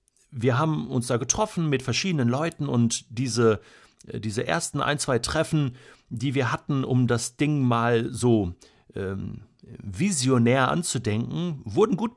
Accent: German